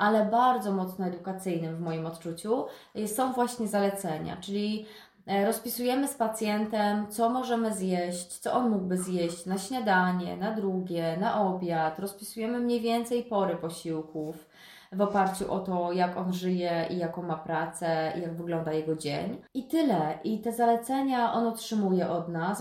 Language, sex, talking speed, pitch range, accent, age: Polish, female, 150 wpm, 170-220 Hz, native, 20-39